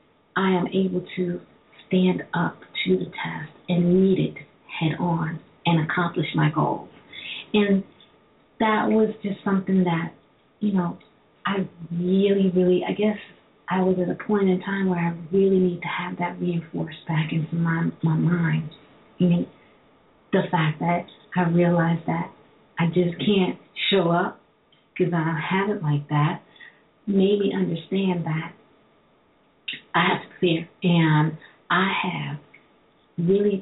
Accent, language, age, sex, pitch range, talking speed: American, English, 40-59, female, 165-190 Hz, 150 wpm